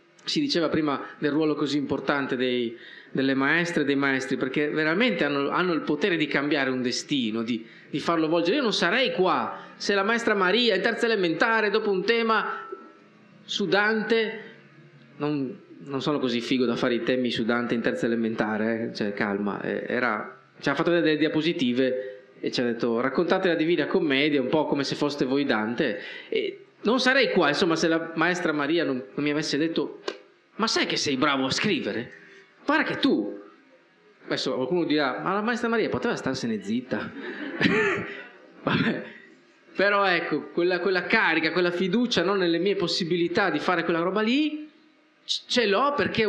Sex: male